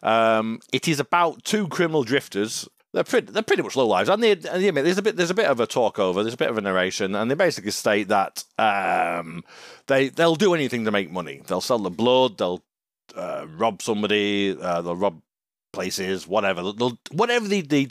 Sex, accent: male, British